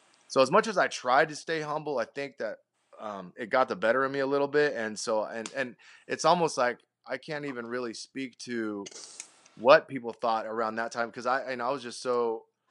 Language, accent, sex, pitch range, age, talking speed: English, American, male, 115-150 Hz, 20-39, 225 wpm